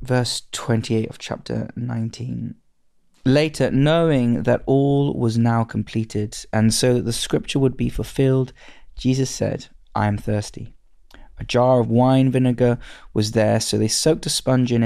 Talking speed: 155 wpm